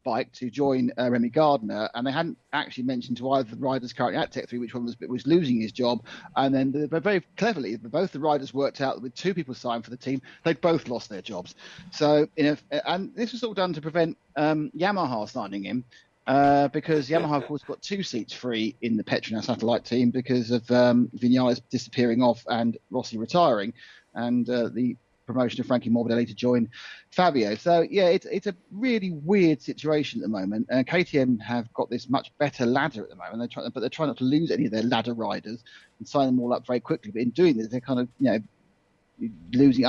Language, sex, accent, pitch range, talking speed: English, male, British, 120-150 Hz, 225 wpm